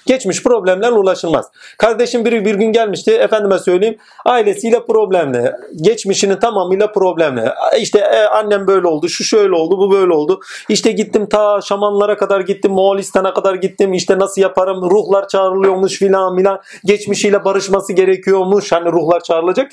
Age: 40-59